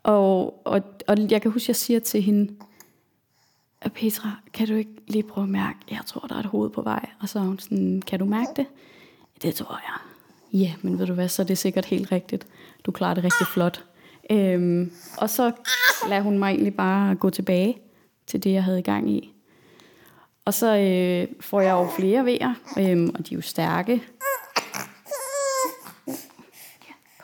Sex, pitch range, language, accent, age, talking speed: female, 180-225 Hz, Danish, native, 20-39, 195 wpm